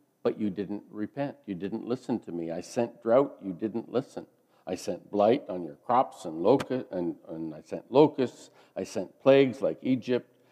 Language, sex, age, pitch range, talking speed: English, male, 50-69, 90-115 Hz, 190 wpm